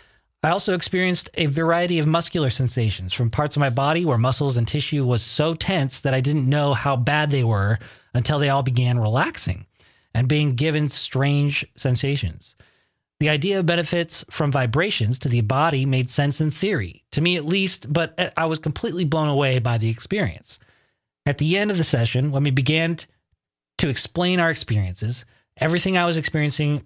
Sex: male